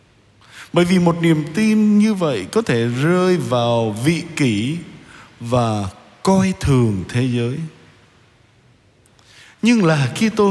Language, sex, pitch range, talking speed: Vietnamese, male, 115-175 Hz, 125 wpm